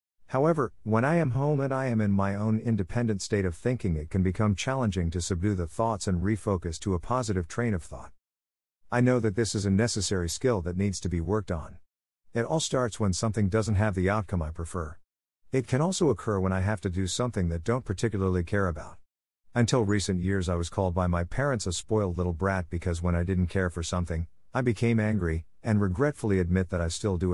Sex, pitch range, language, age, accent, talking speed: male, 85-110 Hz, English, 50-69, American, 220 wpm